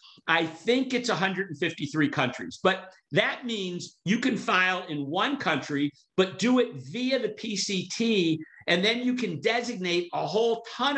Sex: male